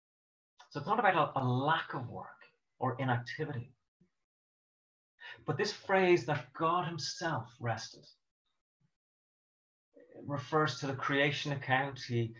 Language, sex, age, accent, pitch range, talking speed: English, male, 30-49, British, 115-135 Hz, 115 wpm